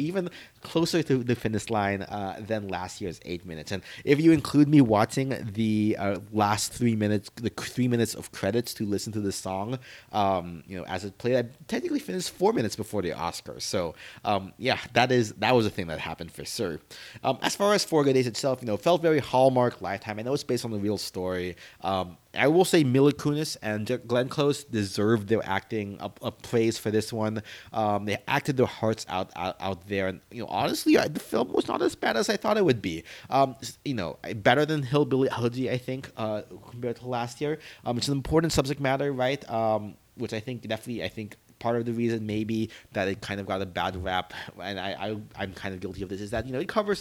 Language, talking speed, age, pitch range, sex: English, 230 wpm, 30-49, 100-130 Hz, male